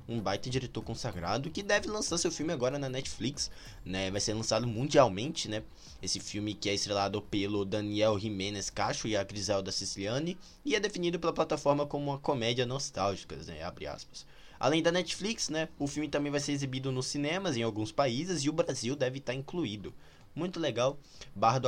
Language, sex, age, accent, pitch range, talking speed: Portuguese, male, 20-39, Brazilian, 105-145 Hz, 185 wpm